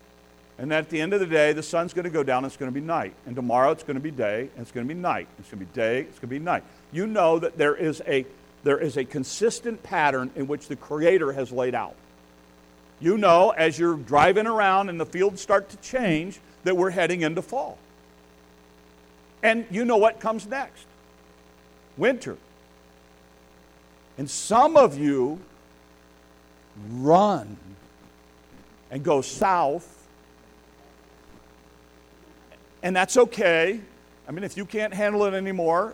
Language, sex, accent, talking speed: English, male, American, 170 wpm